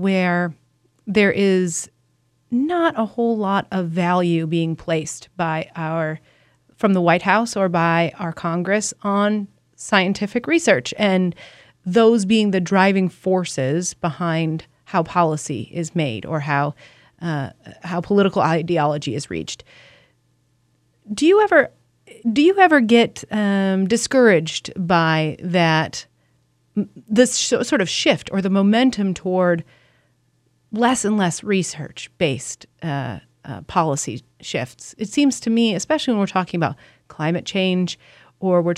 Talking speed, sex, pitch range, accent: 130 wpm, female, 160-205 Hz, American